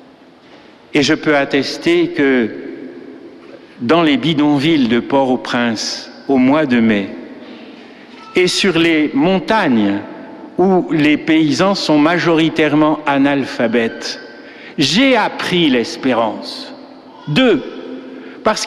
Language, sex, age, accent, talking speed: French, male, 60-79, French, 95 wpm